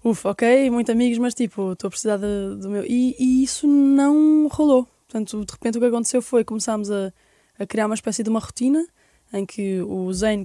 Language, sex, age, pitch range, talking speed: Portuguese, female, 10-29, 200-245 Hz, 215 wpm